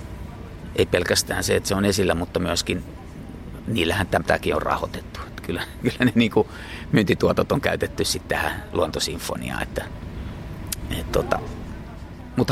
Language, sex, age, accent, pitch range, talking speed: Finnish, male, 30-49, native, 85-100 Hz, 120 wpm